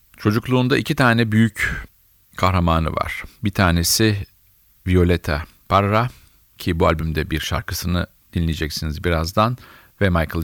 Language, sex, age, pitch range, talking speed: Turkish, male, 50-69, 85-110 Hz, 110 wpm